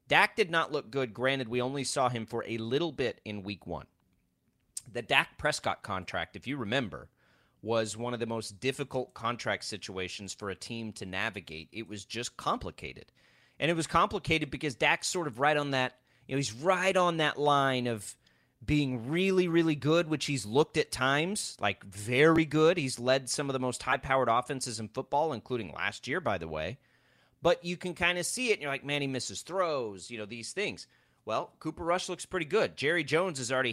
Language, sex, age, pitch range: English, male, 30-49, 120-155 Hz